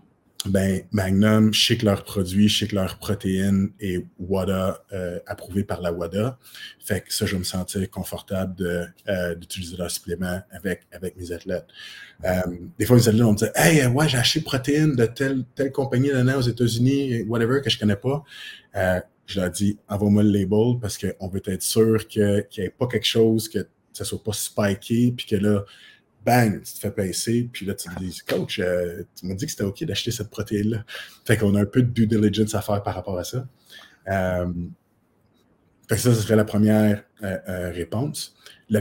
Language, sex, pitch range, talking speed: French, male, 95-115 Hz, 210 wpm